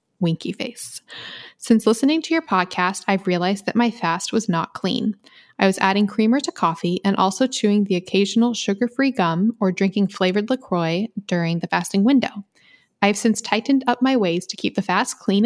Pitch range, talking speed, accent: 185-235 Hz, 185 wpm, American